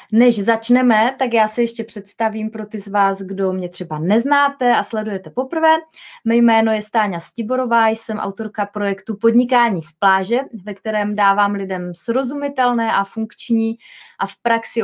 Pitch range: 195-240 Hz